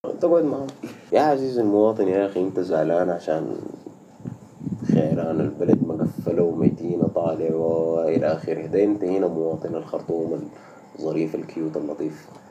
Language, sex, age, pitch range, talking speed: Arabic, male, 30-49, 85-135 Hz, 105 wpm